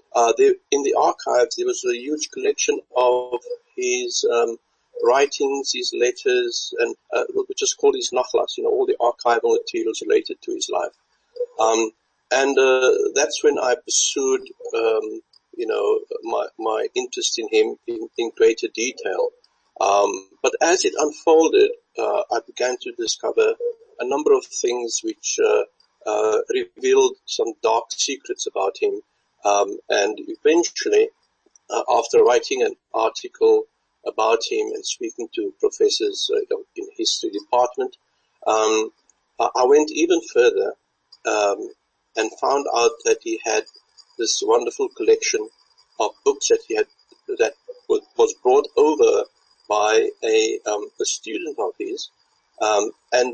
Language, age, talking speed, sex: English, 50-69, 145 wpm, male